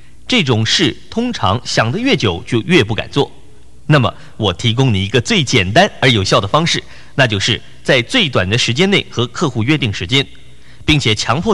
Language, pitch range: Chinese, 95-145 Hz